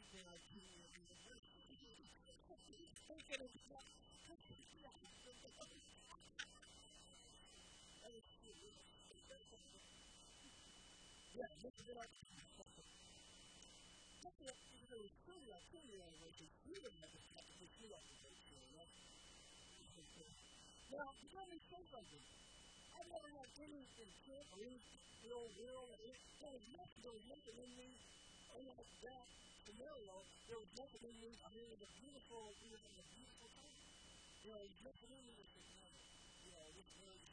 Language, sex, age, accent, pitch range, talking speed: English, female, 50-69, American, 200-260 Hz, 100 wpm